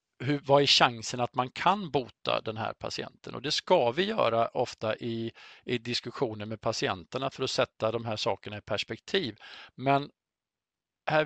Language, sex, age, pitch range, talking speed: Swedish, male, 50-69, 120-155 Hz, 170 wpm